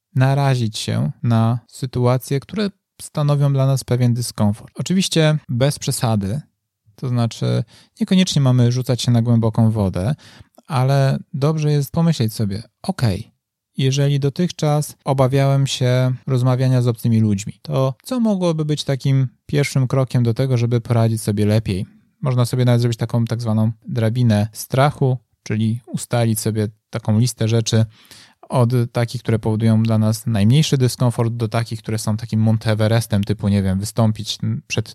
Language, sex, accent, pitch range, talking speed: Polish, male, native, 115-140 Hz, 145 wpm